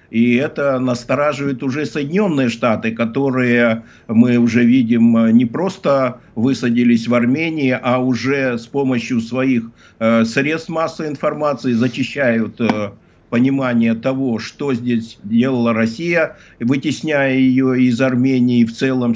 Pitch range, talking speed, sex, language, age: 120-150 Hz, 120 wpm, male, Russian, 50-69